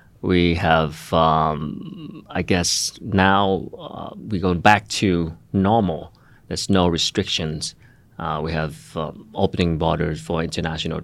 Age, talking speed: 30-49, 125 wpm